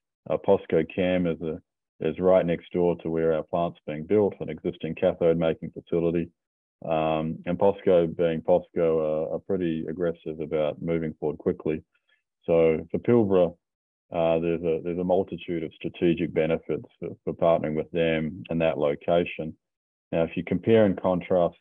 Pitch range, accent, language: 80-90 Hz, Australian, English